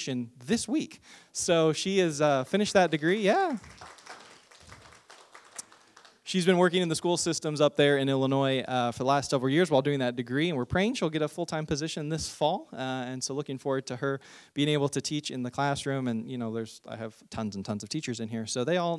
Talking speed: 225 wpm